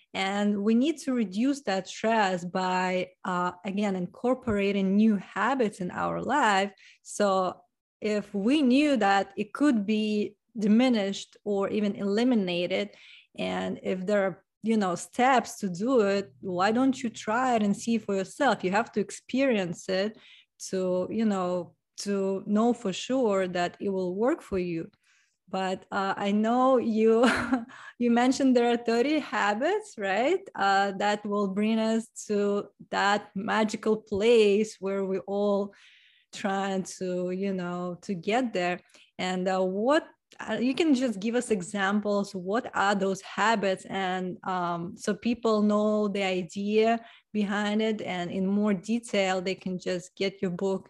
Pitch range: 190-225 Hz